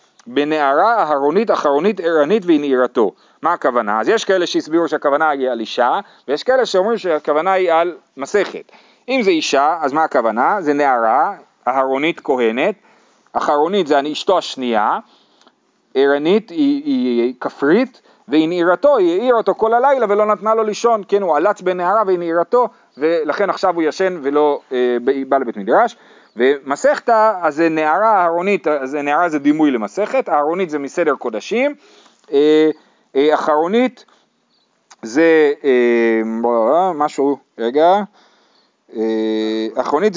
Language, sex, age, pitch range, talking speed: Hebrew, male, 40-59, 145-210 Hz, 135 wpm